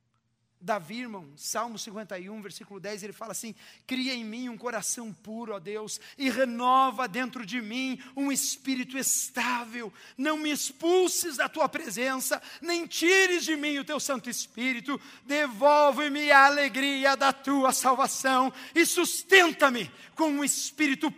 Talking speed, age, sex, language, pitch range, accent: 140 wpm, 50-69, male, Portuguese, 210-285 Hz, Brazilian